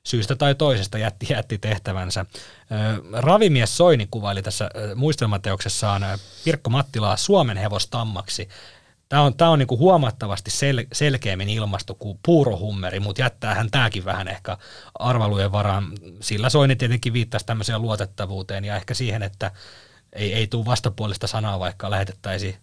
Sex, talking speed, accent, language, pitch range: male, 125 wpm, native, Finnish, 100-130 Hz